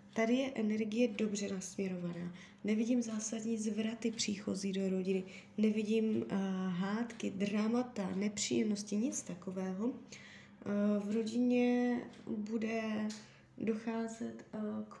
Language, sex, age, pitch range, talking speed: Czech, female, 20-39, 205-235 Hz, 90 wpm